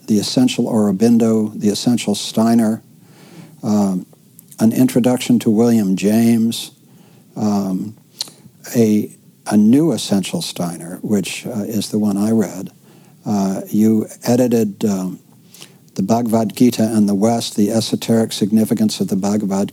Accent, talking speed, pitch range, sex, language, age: American, 125 wpm, 105-120 Hz, male, English, 60-79